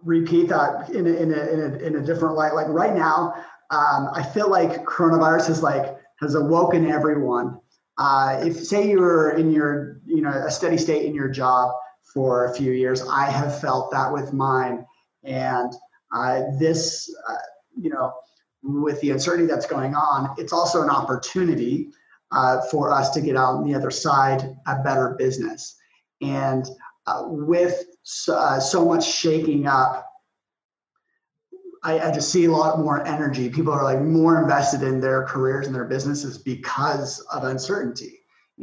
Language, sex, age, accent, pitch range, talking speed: English, male, 30-49, American, 135-170 Hz, 165 wpm